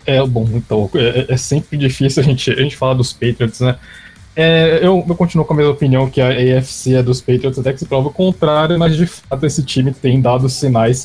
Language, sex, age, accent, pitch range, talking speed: English, male, 20-39, Brazilian, 120-140 Hz, 235 wpm